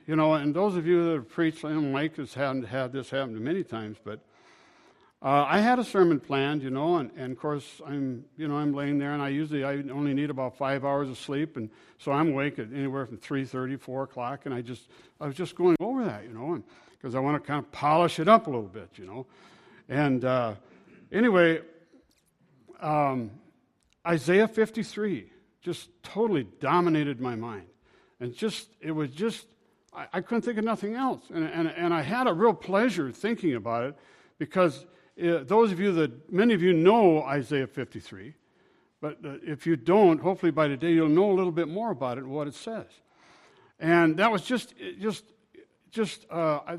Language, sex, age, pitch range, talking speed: English, male, 60-79, 140-190 Hz, 200 wpm